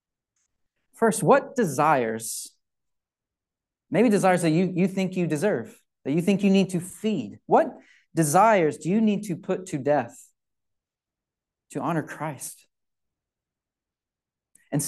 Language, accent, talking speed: English, American, 125 wpm